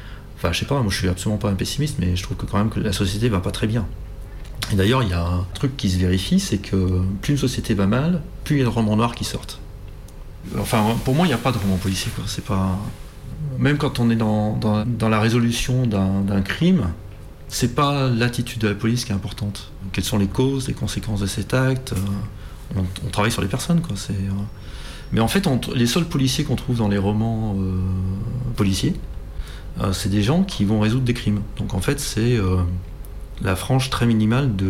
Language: French